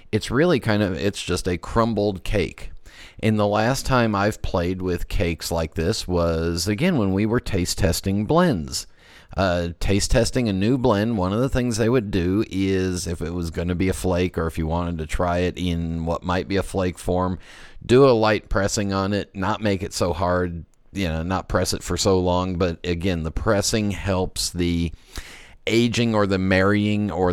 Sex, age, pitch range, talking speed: male, 40-59, 90-110 Hz, 205 wpm